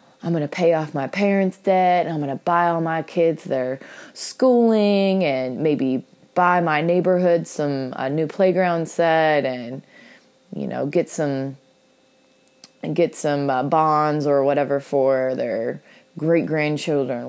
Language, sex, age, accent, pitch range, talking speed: English, female, 20-39, American, 140-170 Hz, 140 wpm